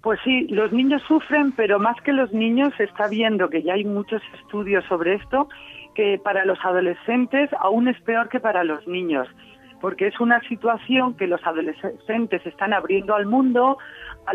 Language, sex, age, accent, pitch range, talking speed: Spanish, female, 40-59, Spanish, 180-235 Hz, 180 wpm